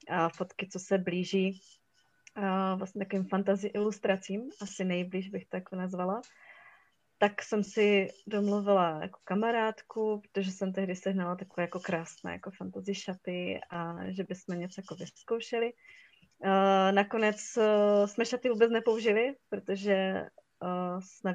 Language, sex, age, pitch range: Czech, female, 20-39, 185-220 Hz